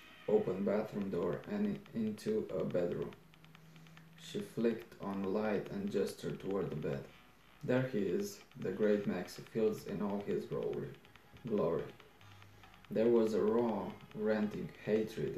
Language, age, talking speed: Romanian, 20-39, 130 wpm